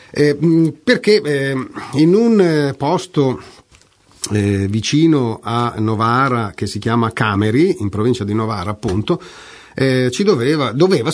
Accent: native